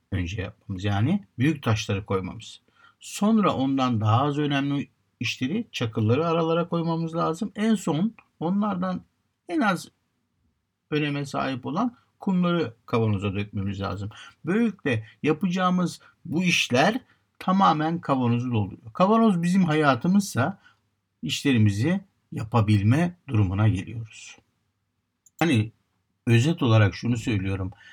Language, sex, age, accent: Turkish, male, 60-79, native